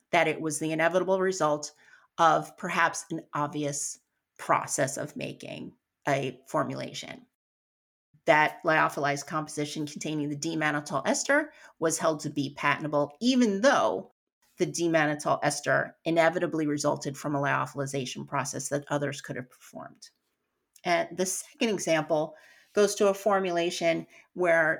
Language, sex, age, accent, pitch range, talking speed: English, female, 30-49, American, 150-190 Hz, 125 wpm